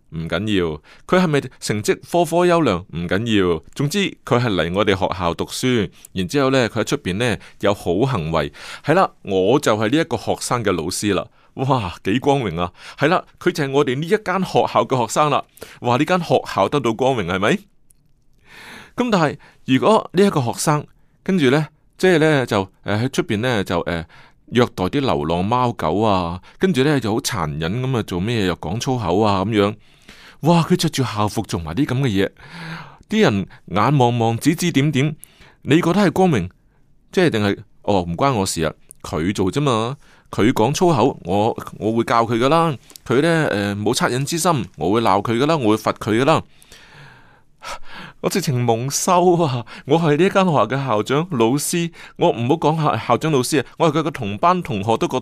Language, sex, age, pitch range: Chinese, male, 30-49, 105-155 Hz